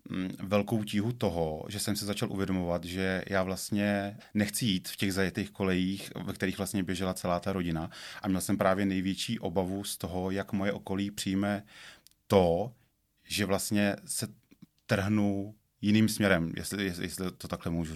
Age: 30-49